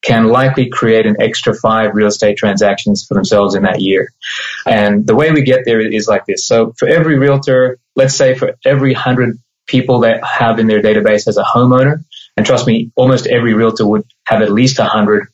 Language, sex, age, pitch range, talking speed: English, male, 20-39, 110-130 Hz, 205 wpm